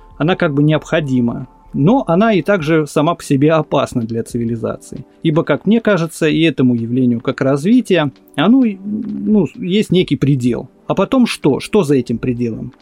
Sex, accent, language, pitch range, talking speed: male, native, Russian, 135-180 Hz, 165 wpm